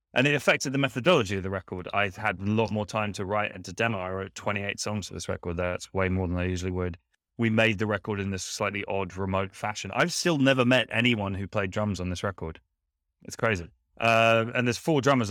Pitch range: 95-115 Hz